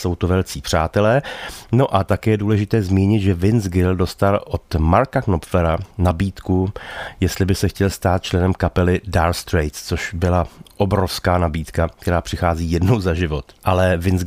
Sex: male